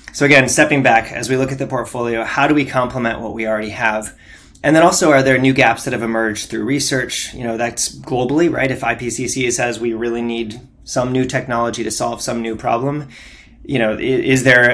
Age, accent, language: 20-39, American, English